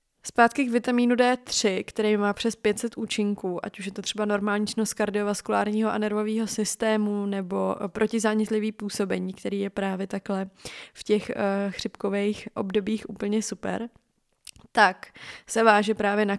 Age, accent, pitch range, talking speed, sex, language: 20-39, native, 200-220 Hz, 135 wpm, female, Czech